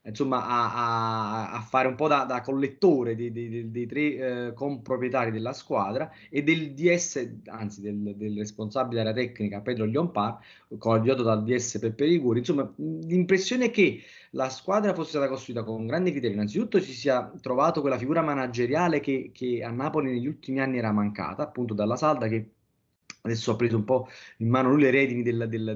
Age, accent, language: 20-39, native, Italian